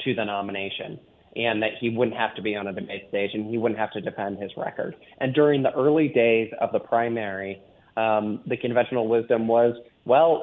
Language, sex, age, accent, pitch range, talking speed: English, male, 30-49, American, 110-135 Hz, 205 wpm